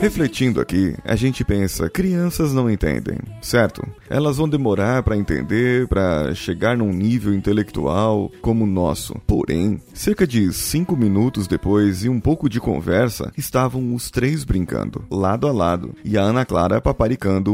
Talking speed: 155 wpm